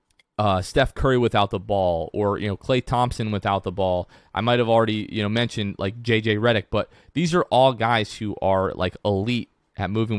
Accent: American